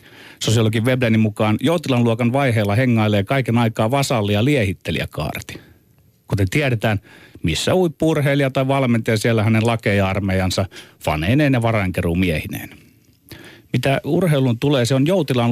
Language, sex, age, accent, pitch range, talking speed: Finnish, male, 30-49, native, 100-130 Hz, 115 wpm